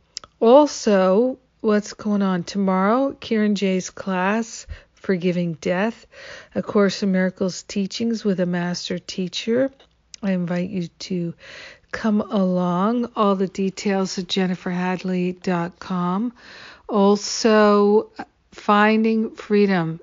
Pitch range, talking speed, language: 180-205 Hz, 100 wpm, English